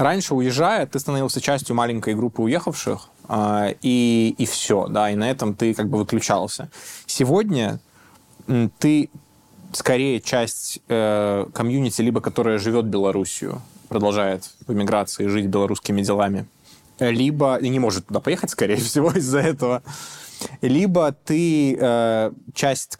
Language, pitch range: Russian, 105-135 Hz